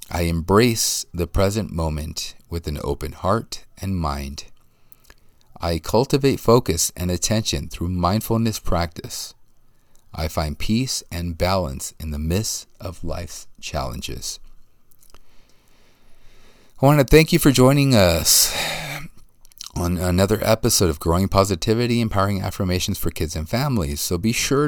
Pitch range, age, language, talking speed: 85-120 Hz, 40-59, English, 130 wpm